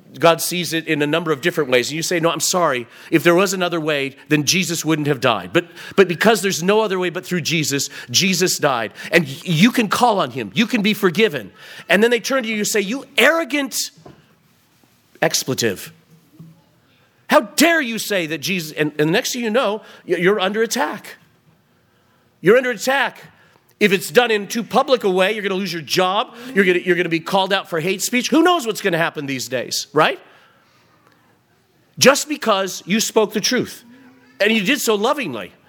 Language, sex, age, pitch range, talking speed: English, male, 40-59, 150-215 Hz, 210 wpm